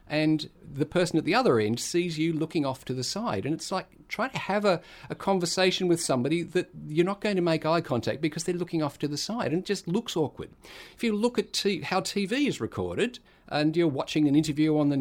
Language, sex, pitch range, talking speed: English, male, 115-170 Hz, 245 wpm